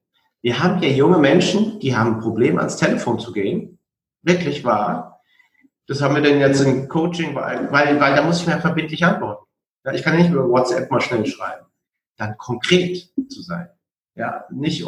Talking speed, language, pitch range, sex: 185 wpm, German, 125-175 Hz, male